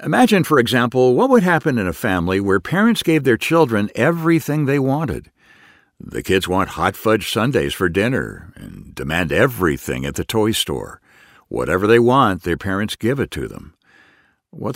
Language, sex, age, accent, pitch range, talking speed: English, male, 60-79, American, 95-140 Hz, 170 wpm